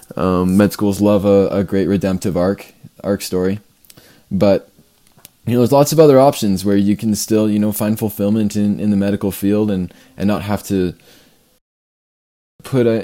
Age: 20-39